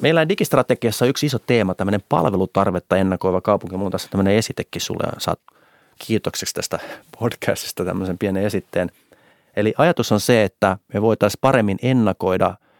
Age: 30-49